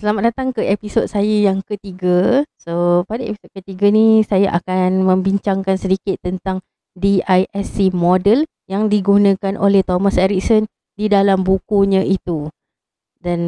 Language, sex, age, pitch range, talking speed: Malay, female, 20-39, 180-205 Hz, 130 wpm